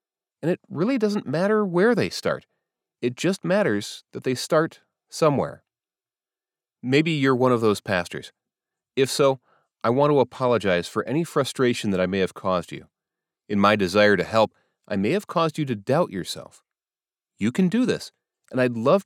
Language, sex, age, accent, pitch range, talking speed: English, male, 30-49, American, 110-155 Hz, 175 wpm